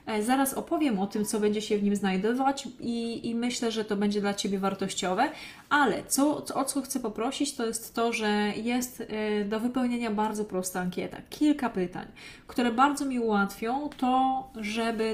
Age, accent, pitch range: 20-39, native, 205-245 Hz